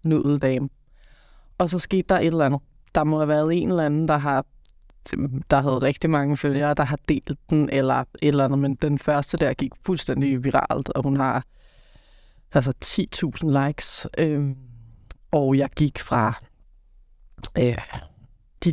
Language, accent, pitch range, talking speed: Danish, native, 135-155 Hz, 155 wpm